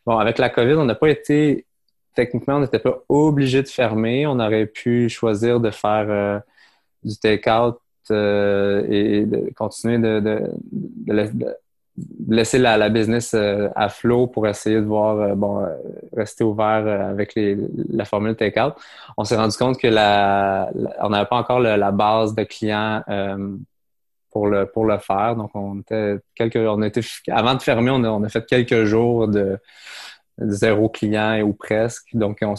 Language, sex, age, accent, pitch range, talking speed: French, male, 20-39, Canadian, 105-120 Hz, 180 wpm